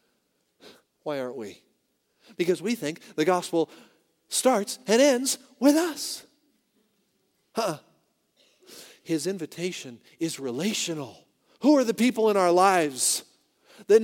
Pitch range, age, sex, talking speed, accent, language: 155-235 Hz, 40-59, male, 110 wpm, American, English